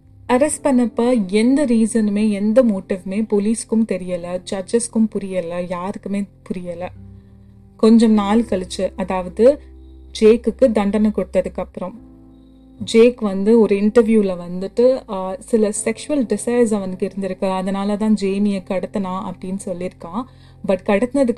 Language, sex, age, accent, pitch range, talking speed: Tamil, female, 30-49, native, 185-230 Hz, 100 wpm